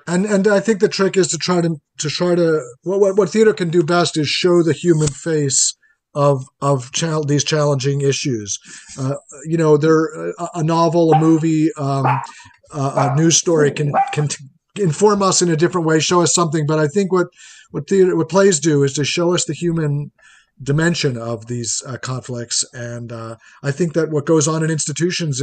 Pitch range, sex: 140-175 Hz, male